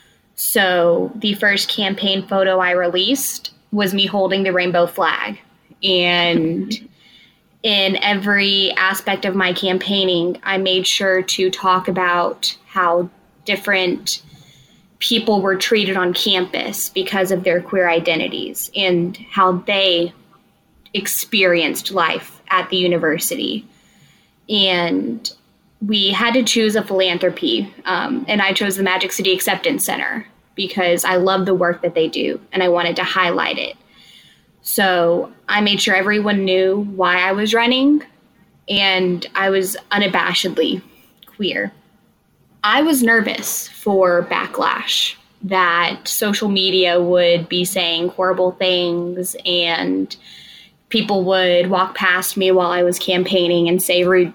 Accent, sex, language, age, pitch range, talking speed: American, female, English, 20-39, 180-205 Hz, 130 wpm